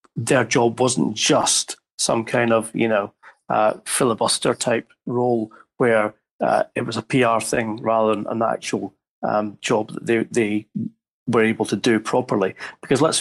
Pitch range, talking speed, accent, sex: 110-130 Hz, 165 wpm, British, male